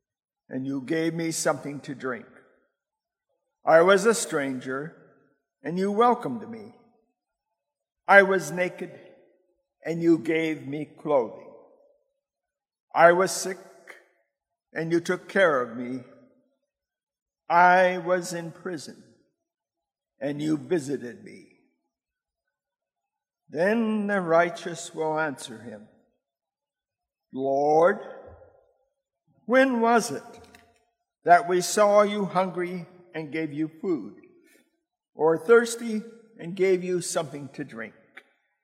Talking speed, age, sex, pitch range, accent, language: 105 wpm, 50-69, male, 160-235 Hz, American, English